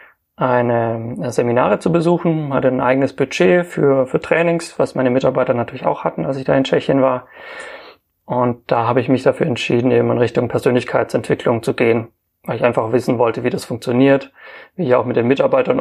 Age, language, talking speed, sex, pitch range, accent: 30-49, German, 190 wpm, male, 120-135 Hz, German